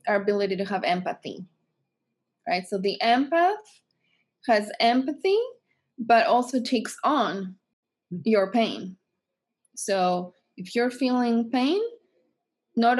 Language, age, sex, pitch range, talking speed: English, 20-39, female, 190-240 Hz, 105 wpm